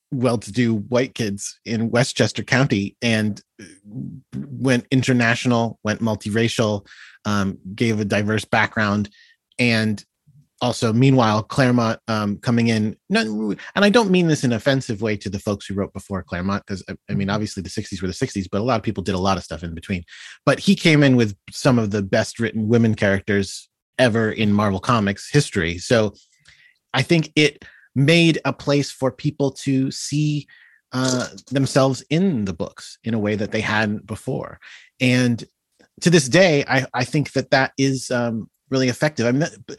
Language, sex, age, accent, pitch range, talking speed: English, male, 30-49, American, 105-135 Hz, 170 wpm